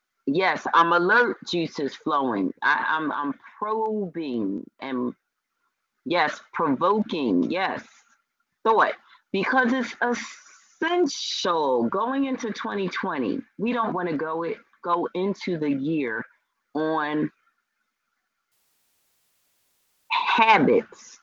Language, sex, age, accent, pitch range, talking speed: English, female, 30-49, American, 155-240 Hz, 90 wpm